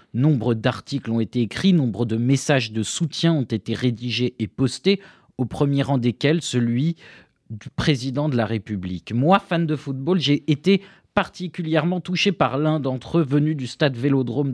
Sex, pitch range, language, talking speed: male, 120-165 Hz, French, 170 wpm